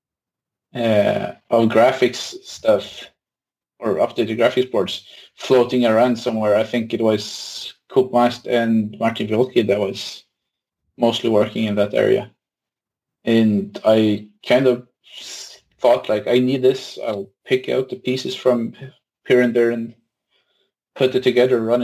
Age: 30-49